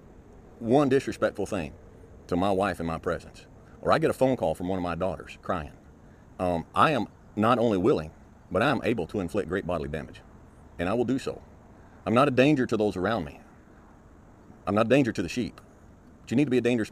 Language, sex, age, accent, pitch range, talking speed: English, male, 40-59, American, 90-120 Hz, 220 wpm